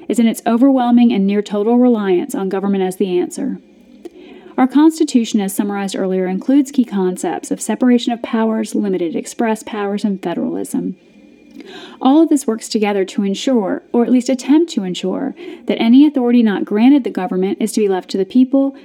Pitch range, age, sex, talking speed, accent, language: 205-285 Hz, 30-49, female, 180 wpm, American, English